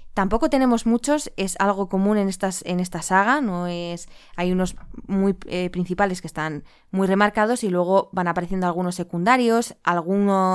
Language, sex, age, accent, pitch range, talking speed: Spanish, female, 20-39, Spanish, 185-245 Hz, 165 wpm